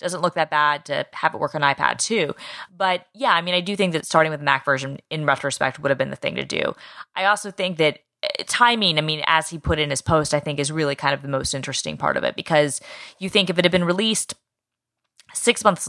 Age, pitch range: 20-39, 145-185 Hz